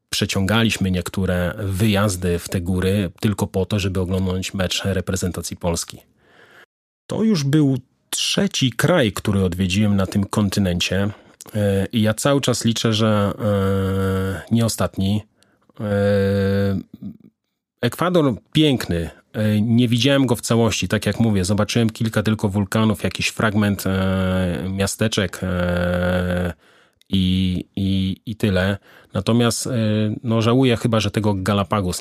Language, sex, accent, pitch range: Polish, male, native, 95-115 Hz